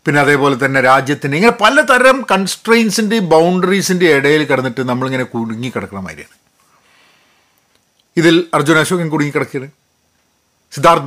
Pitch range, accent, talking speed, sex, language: 130-180 Hz, native, 110 wpm, male, Malayalam